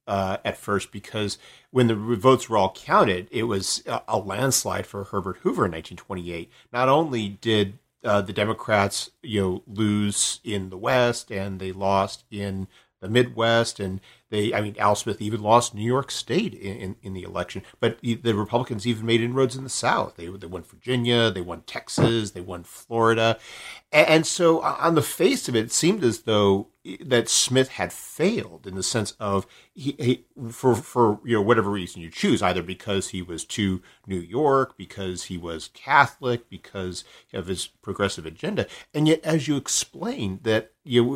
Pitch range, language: 95-120 Hz, English